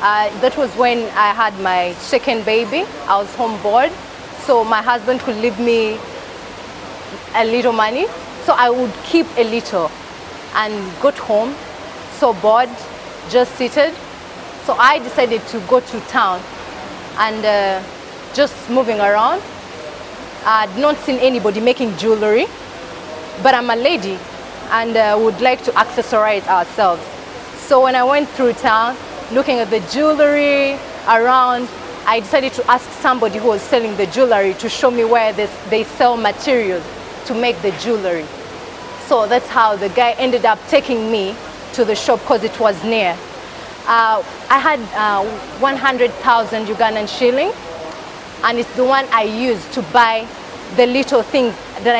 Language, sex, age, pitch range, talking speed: English, female, 20-39, 215-255 Hz, 150 wpm